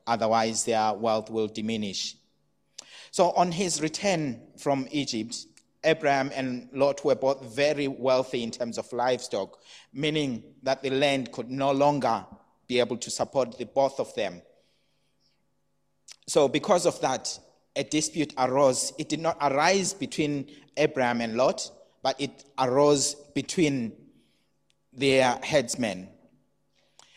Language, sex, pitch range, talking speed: English, male, 125-150 Hz, 130 wpm